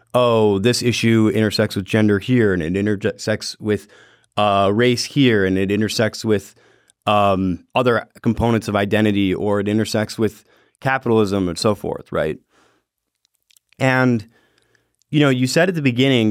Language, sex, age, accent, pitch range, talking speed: English, male, 30-49, American, 100-120 Hz, 145 wpm